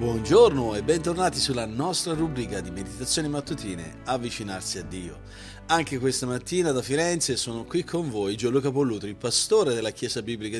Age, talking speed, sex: 40-59, 155 wpm, male